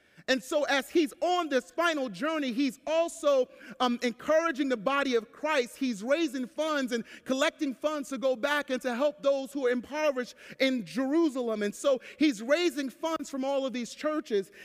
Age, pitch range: 40-59, 265-335 Hz